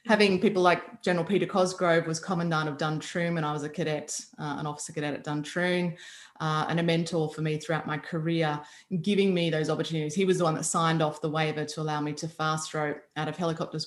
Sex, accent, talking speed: female, Australian, 225 wpm